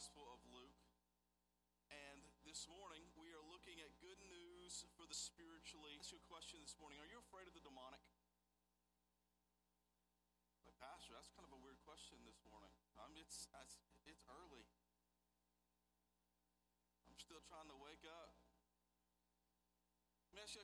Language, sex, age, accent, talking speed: English, male, 40-59, American, 150 wpm